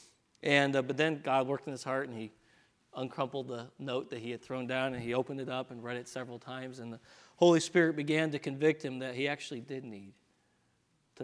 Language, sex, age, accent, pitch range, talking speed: English, male, 40-59, American, 145-175 Hz, 230 wpm